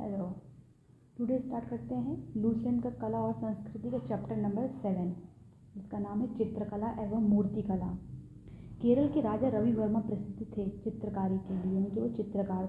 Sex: female